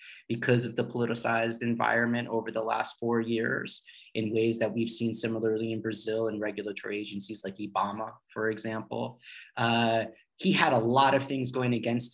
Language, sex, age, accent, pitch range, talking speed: Portuguese, male, 30-49, American, 110-125 Hz, 170 wpm